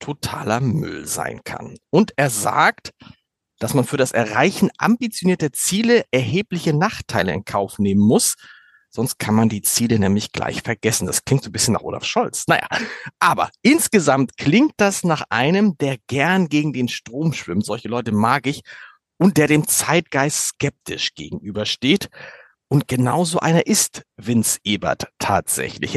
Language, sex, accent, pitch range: German, male, German, 120-185 Hz